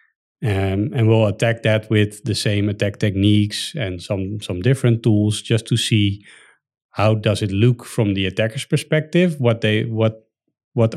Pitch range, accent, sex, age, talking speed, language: 100-120 Hz, Dutch, male, 40-59, 165 wpm, English